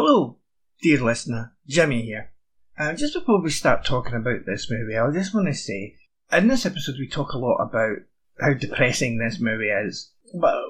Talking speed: 185 wpm